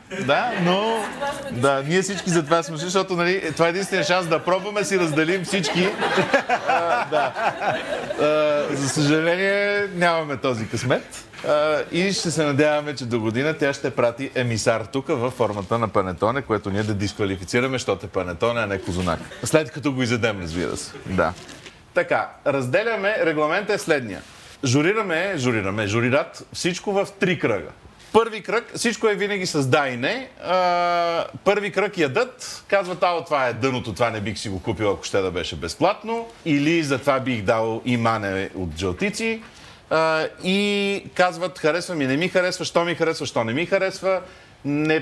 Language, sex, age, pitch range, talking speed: Bulgarian, male, 40-59, 125-185 Hz, 165 wpm